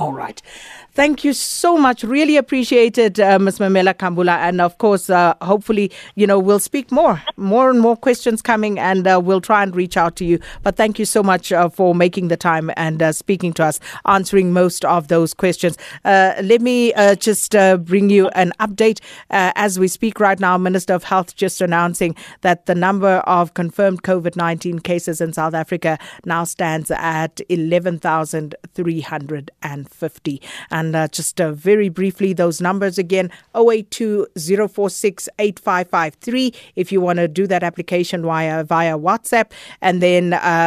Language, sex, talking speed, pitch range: English, female, 170 wpm, 170-205 Hz